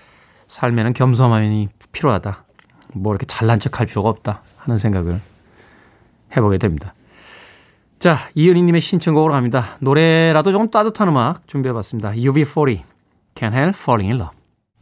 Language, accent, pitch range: Korean, native, 110-165 Hz